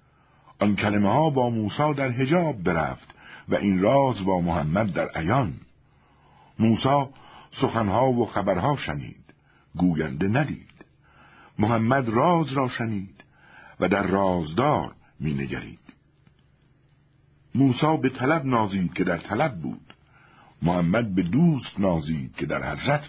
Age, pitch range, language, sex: 60-79, 95-135 Hz, Persian, male